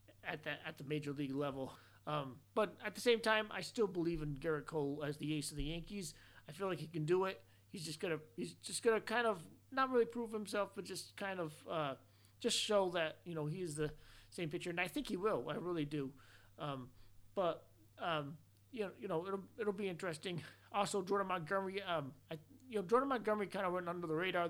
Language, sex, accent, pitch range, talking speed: English, male, American, 150-195 Hz, 225 wpm